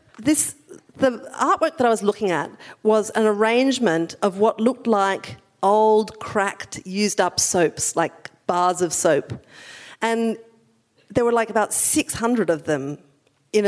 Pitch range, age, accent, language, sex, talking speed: 165-215 Hz, 40-59, Australian, English, female, 140 wpm